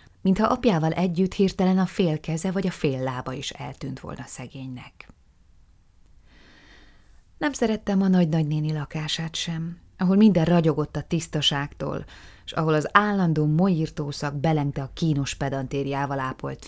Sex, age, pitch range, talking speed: female, 30-49, 140-175 Hz, 125 wpm